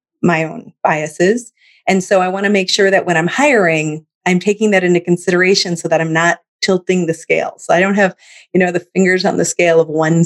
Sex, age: female, 30-49